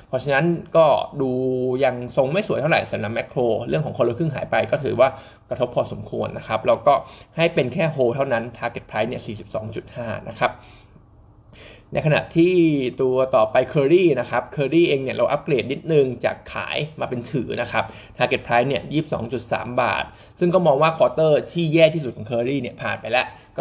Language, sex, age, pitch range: Thai, male, 20-39, 120-155 Hz